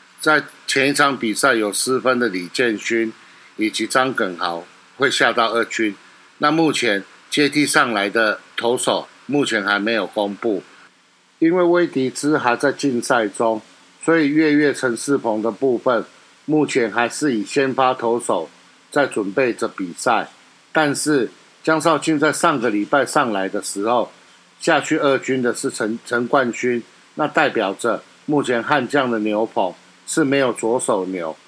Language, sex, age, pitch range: Chinese, male, 50-69, 115-140 Hz